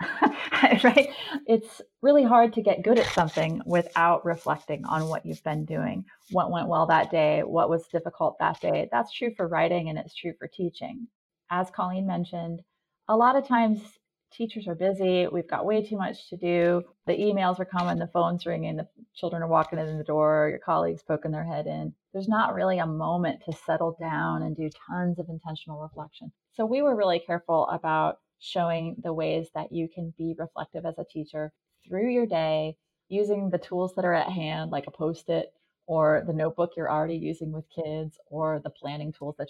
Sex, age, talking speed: female, 30-49, 195 wpm